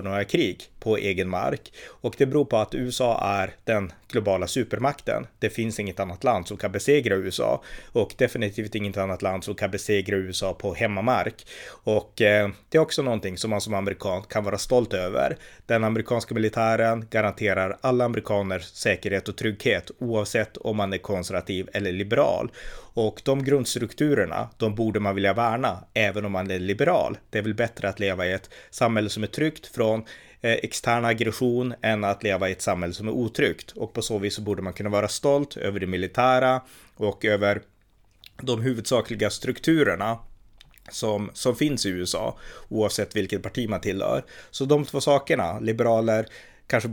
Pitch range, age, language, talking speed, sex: 100-120 Hz, 30-49, Swedish, 175 wpm, male